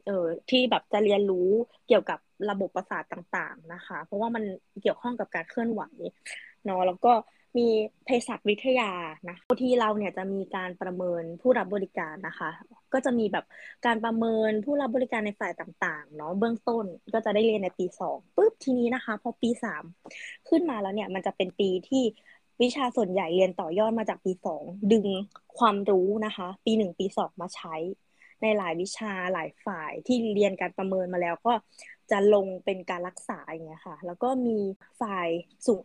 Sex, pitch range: female, 185-240 Hz